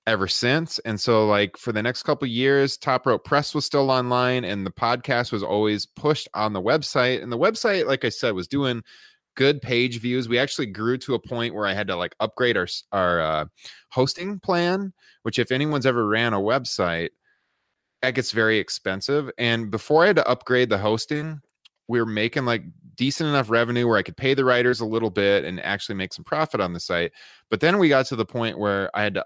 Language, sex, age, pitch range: English, male, 30-49, 100-125 Hz